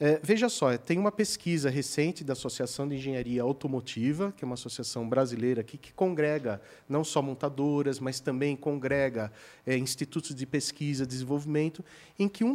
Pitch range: 130-205 Hz